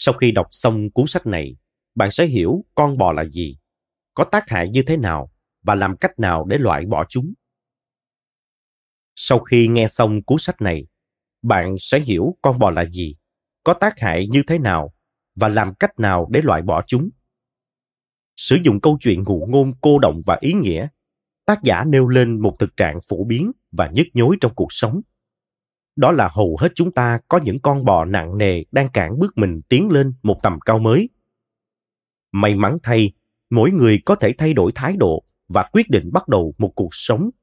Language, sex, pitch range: Vietnamese, male, 100-135 Hz